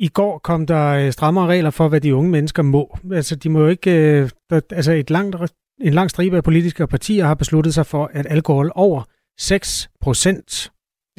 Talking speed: 180 wpm